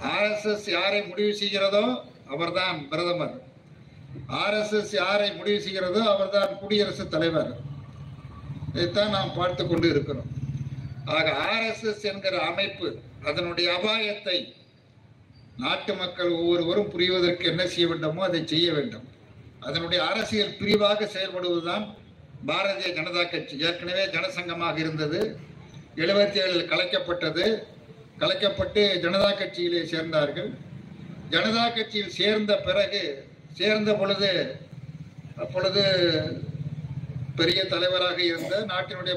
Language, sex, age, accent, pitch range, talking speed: Tamil, male, 50-69, native, 155-200 Hz, 95 wpm